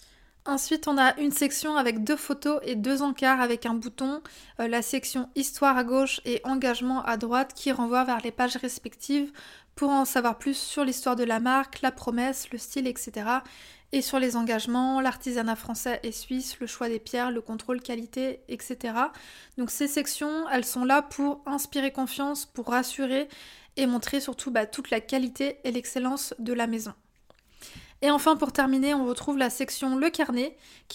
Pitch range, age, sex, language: 245-275 Hz, 20-39, female, French